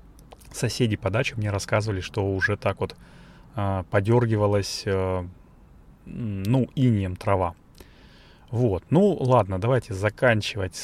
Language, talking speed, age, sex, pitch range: Russian, 105 wpm, 20-39, male, 100-125 Hz